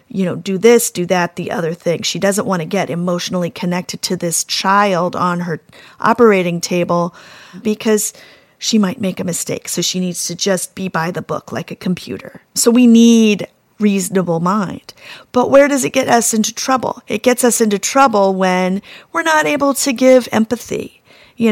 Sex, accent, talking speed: female, American, 185 wpm